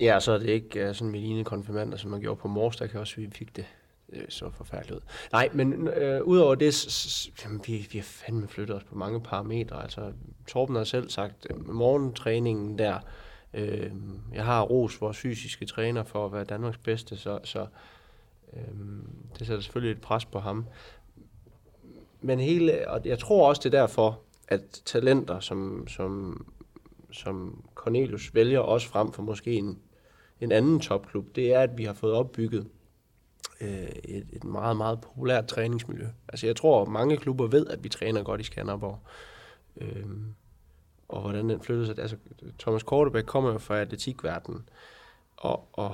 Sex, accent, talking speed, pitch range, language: male, native, 180 wpm, 105-120 Hz, Danish